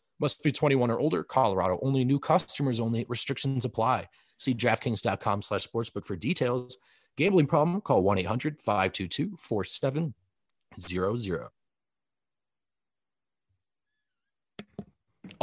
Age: 30-49